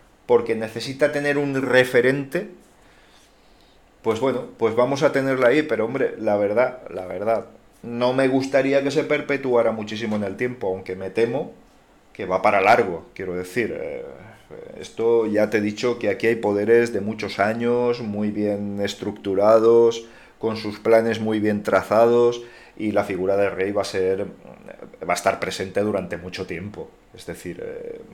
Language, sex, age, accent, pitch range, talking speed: Spanish, male, 30-49, Spanish, 105-135 Hz, 165 wpm